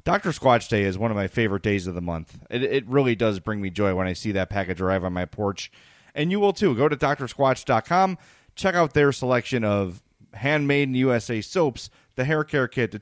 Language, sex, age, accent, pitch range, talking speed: English, male, 30-49, American, 110-145 Hz, 220 wpm